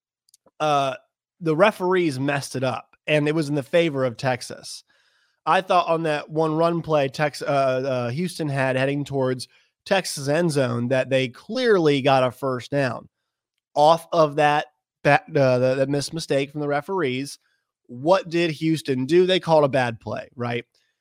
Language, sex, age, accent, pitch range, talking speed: English, male, 30-49, American, 135-175 Hz, 165 wpm